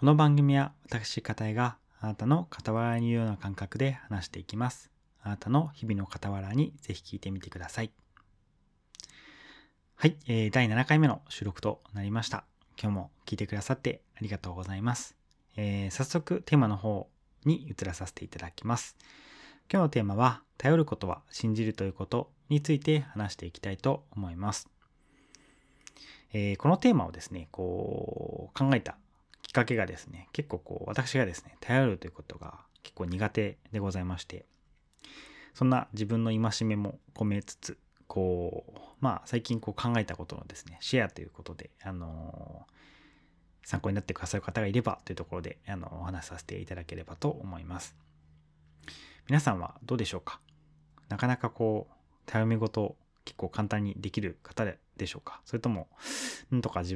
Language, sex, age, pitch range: Japanese, male, 20-39, 90-125 Hz